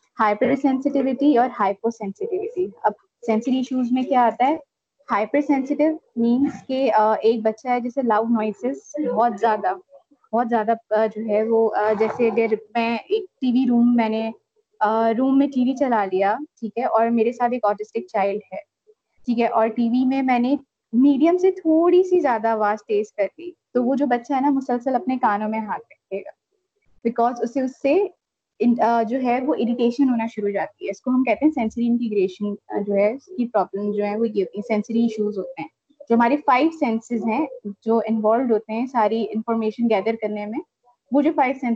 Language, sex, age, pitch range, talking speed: Urdu, female, 20-39, 220-280 Hz, 80 wpm